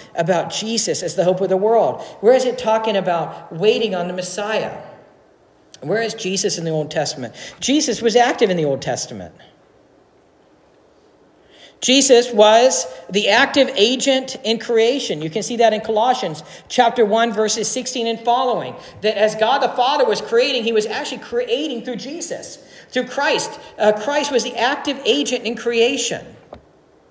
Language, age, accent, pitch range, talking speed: English, 50-69, American, 175-230 Hz, 160 wpm